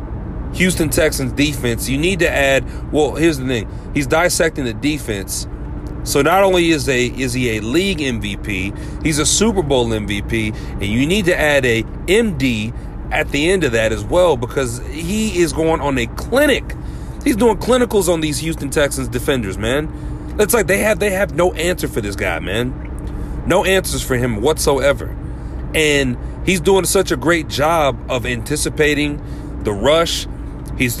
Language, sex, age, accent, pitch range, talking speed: English, male, 40-59, American, 120-175 Hz, 170 wpm